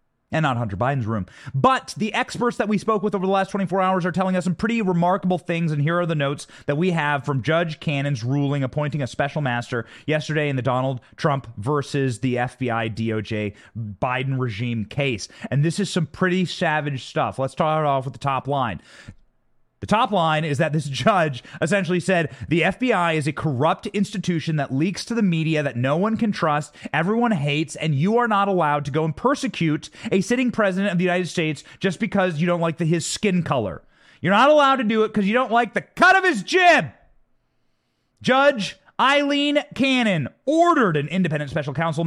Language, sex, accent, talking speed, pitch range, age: English, male, American, 200 wpm, 140-200 Hz, 30-49